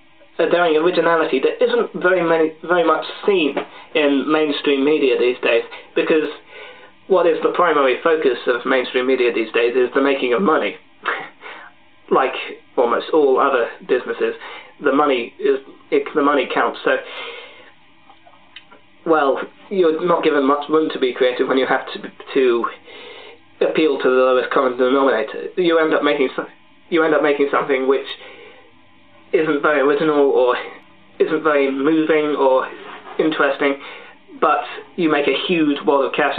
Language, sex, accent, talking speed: English, male, British, 150 wpm